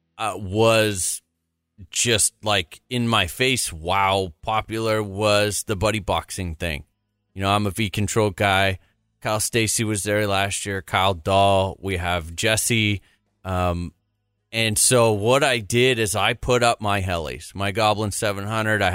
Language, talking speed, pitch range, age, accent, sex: English, 160 wpm, 95-115 Hz, 30-49, American, male